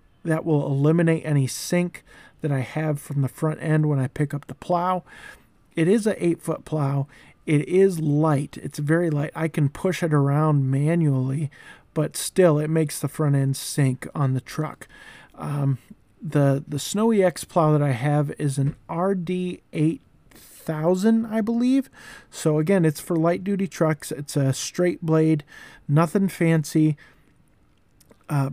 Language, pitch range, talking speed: English, 145-170 Hz, 155 wpm